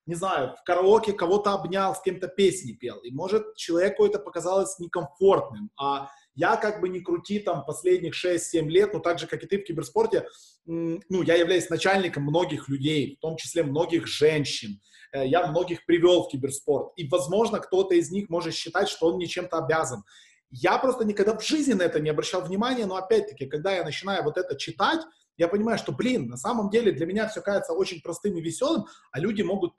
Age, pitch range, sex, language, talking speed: 20-39, 160-200 Hz, male, Russian, 200 wpm